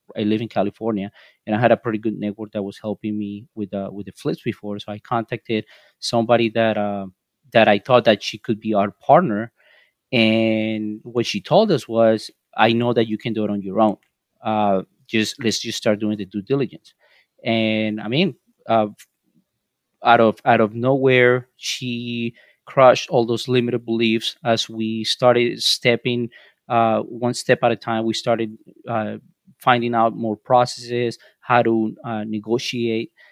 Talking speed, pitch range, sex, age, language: 175 wpm, 110-120 Hz, male, 30-49, English